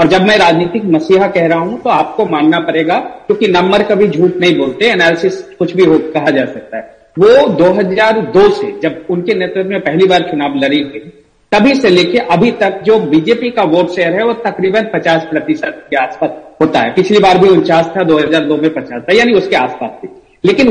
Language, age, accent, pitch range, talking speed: Hindi, 50-69, native, 175-255 Hz, 205 wpm